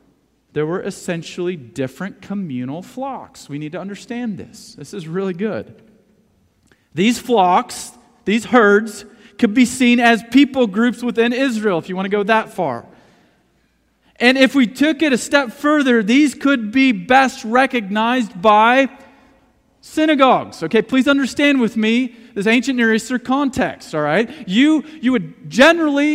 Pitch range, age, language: 190-255 Hz, 40-59, English